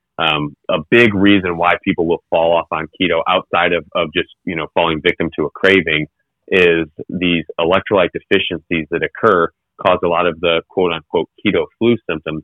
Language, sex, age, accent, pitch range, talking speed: English, male, 30-49, American, 80-90 Hz, 185 wpm